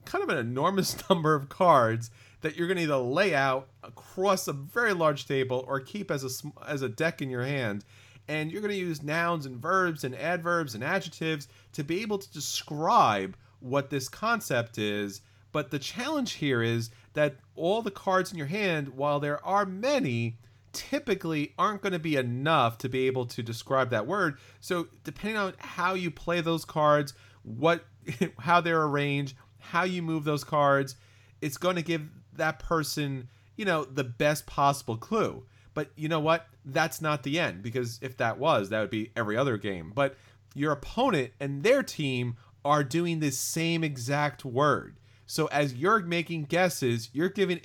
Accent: American